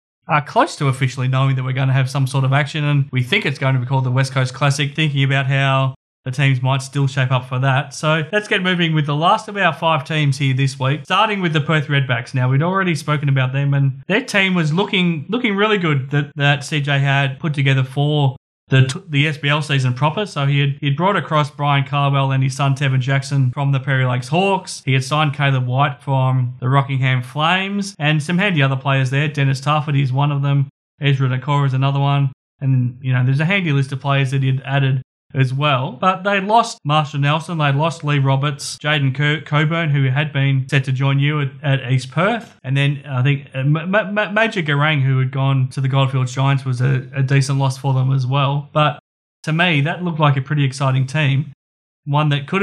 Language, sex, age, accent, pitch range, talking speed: English, male, 20-39, Australian, 135-150 Hz, 230 wpm